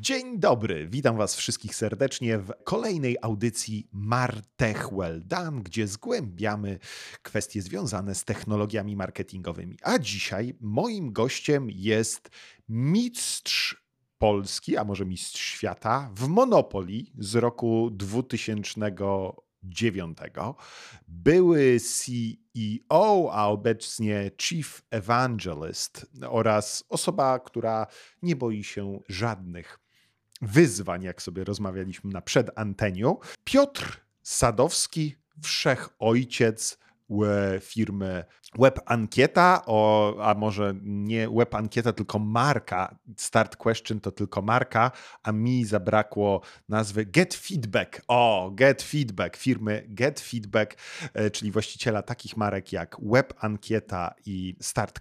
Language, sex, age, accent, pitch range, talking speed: Polish, male, 40-59, native, 100-125 Hz, 105 wpm